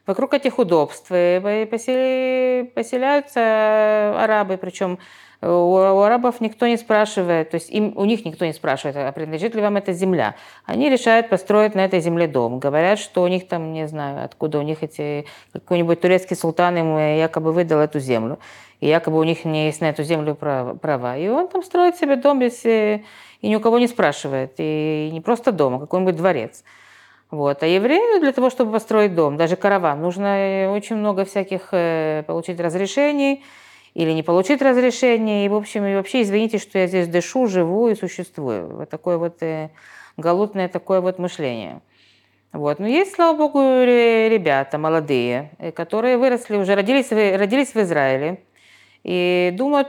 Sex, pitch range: female, 160-230 Hz